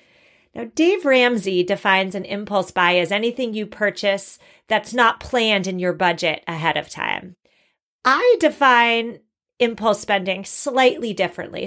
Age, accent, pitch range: 30-49, American, 200-265 Hz